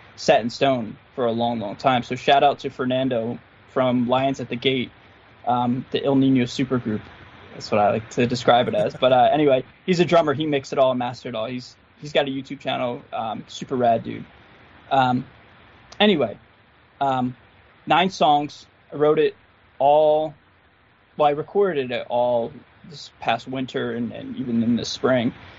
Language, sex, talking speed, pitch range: English, male, 185 wpm, 120-145 Hz